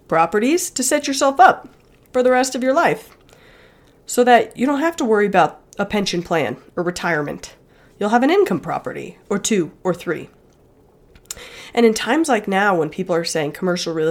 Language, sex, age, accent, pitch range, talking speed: English, female, 30-49, American, 175-245 Hz, 185 wpm